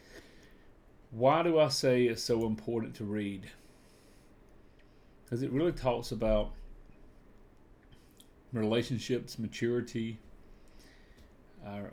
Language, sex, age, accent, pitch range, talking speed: English, male, 40-59, American, 105-130 Hz, 85 wpm